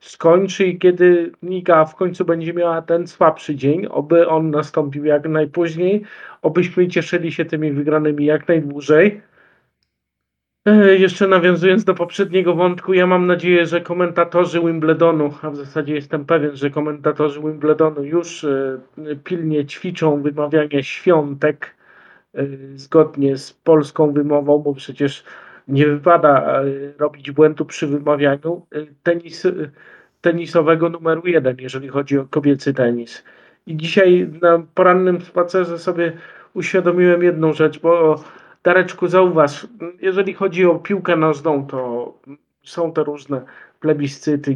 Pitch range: 145-175 Hz